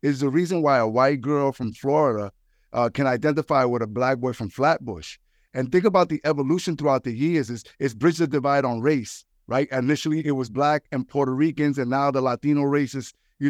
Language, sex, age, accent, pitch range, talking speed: English, male, 50-69, American, 135-170 Hz, 210 wpm